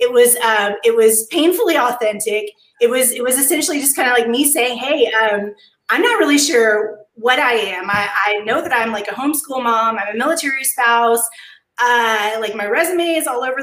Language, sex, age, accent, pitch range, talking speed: English, female, 20-39, American, 230-320 Hz, 205 wpm